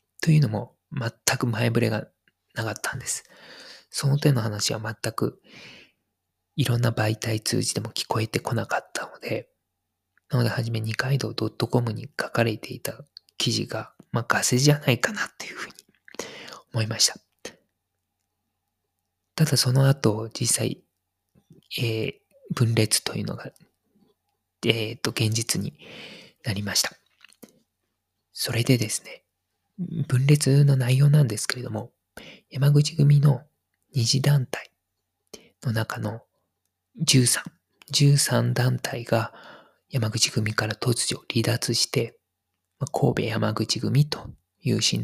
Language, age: Japanese, 20-39